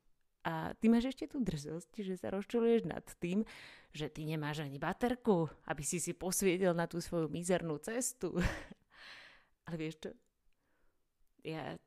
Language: Slovak